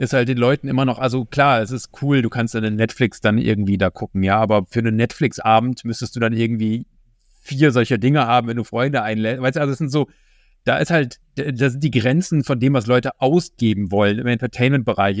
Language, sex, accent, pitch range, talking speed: German, male, German, 110-130 Hz, 230 wpm